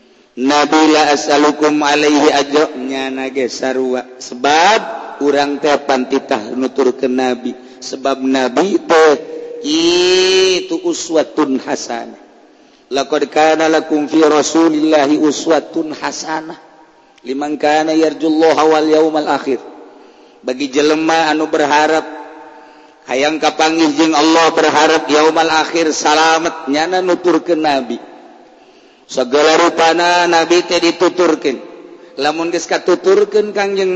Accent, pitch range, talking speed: native, 145-170 Hz, 90 wpm